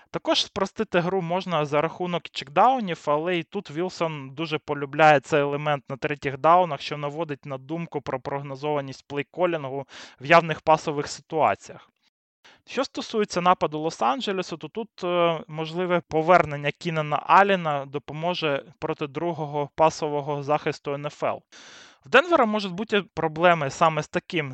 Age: 20-39